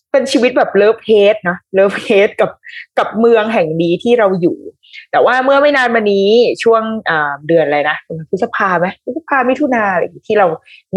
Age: 20-39